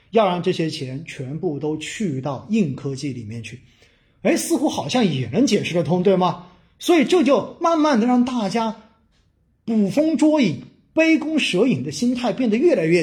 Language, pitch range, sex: Chinese, 165-245 Hz, male